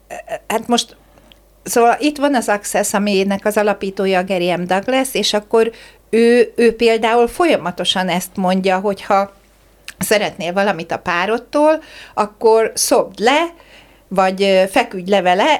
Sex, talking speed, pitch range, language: female, 125 wpm, 190-235 Hz, Hungarian